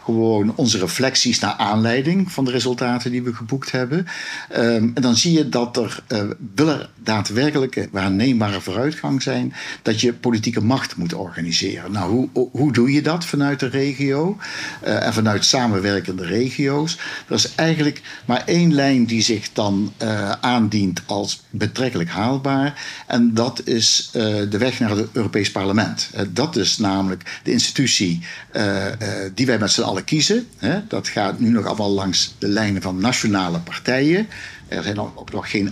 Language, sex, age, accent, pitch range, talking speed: German, male, 50-69, Dutch, 100-130 Hz, 165 wpm